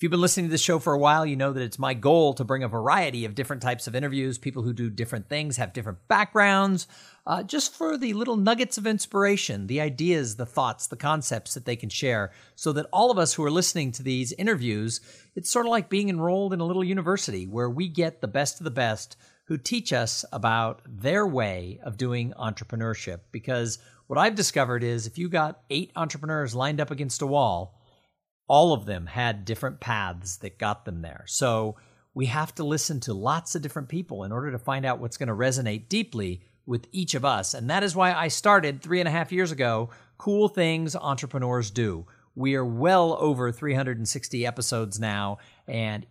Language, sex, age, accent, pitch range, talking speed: English, male, 50-69, American, 115-165 Hz, 210 wpm